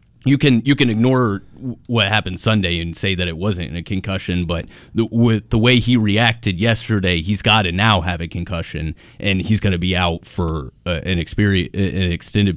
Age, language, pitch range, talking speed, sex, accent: 30-49, English, 95-120 Hz, 200 wpm, male, American